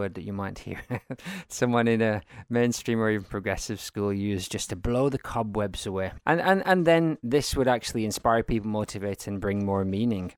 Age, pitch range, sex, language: 20-39, 105-130 Hz, male, English